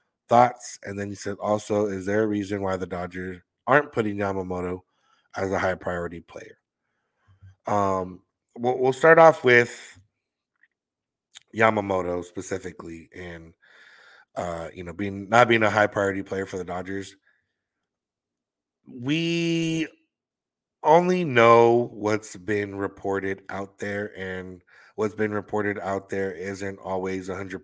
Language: English